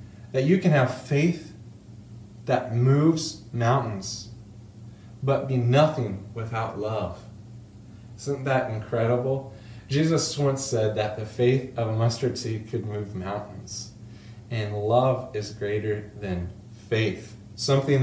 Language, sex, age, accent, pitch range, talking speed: English, male, 30-49, American, 110-130 Hz, 120 wpm